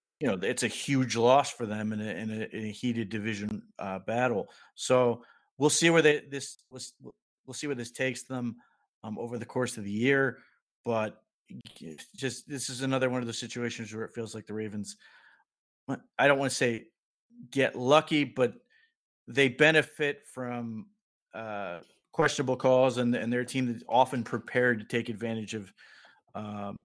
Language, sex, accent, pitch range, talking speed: English, male, American, 110-135 Hz, 170 wpm